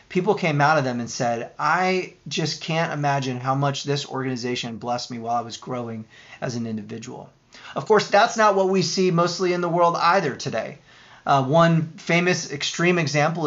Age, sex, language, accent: 30-49, male, English, American